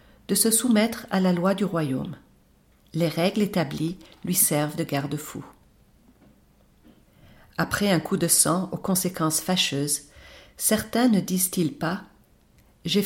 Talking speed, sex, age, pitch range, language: 135 wpm, female, 50-69, 155-200 Hz, French